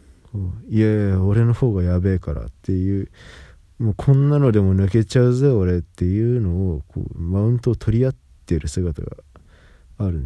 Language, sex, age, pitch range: Japanese, male, 20-39, 85-115 Hz